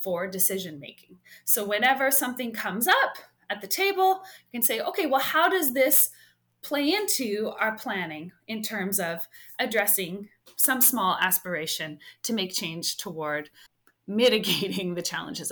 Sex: female